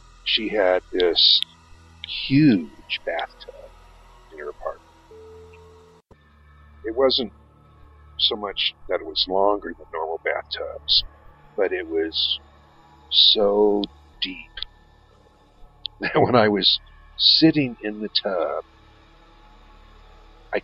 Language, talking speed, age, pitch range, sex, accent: English, 95 wpm, 50-69, 80-130 Hz, male, American